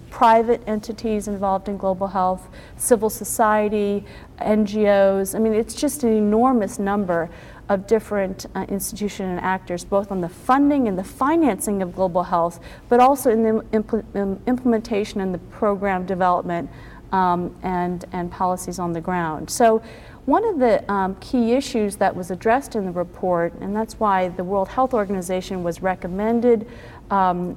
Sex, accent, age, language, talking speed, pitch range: female, American, 50-69, English, 160 wpm, 185-230 Hz